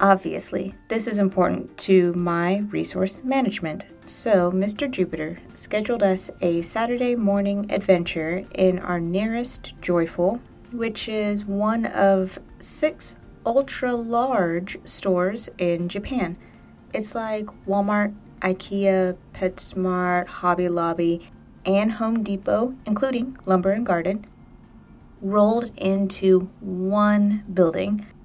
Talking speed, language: 100 wpm, English